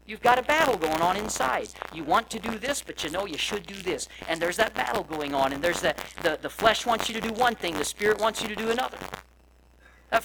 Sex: male